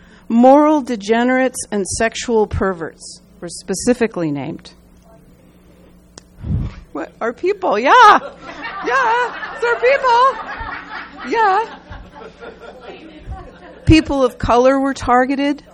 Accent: American